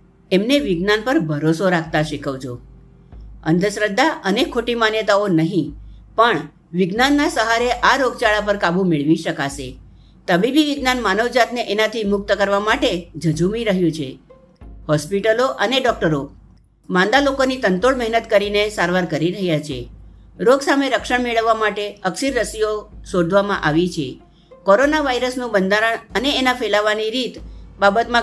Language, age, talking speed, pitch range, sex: Gujarati, 50-69, 35 wpm, 165-230 Hz, female